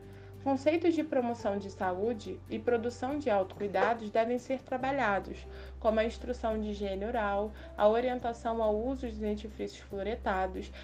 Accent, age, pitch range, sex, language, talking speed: Brazilian, 20-39, 200-245 Hz, female, Portuguese, 140 wpm